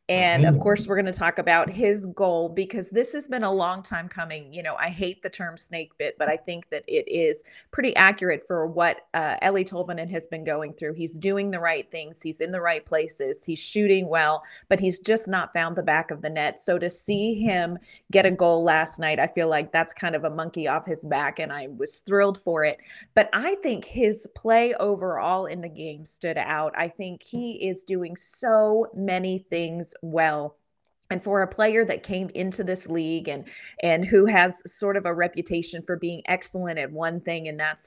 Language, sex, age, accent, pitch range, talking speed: English, female, 30-49, American, 165-200 Hz, 215 wpm